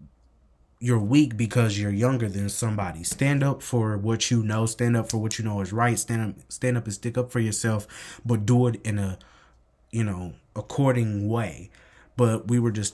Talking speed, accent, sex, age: 195 wpm, American, male, 20-39